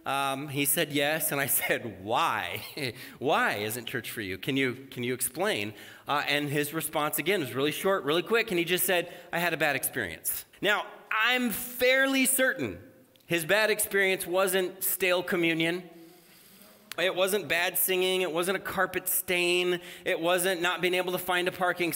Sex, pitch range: male, 160-215 Hz